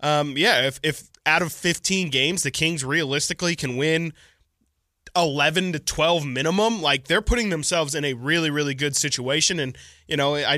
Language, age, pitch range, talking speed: English, 20-39, 135-170 Hz, 175 wpm